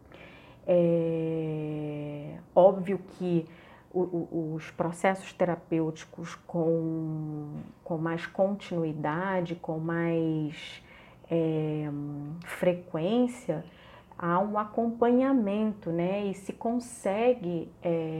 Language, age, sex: Portuguese, 30-49, female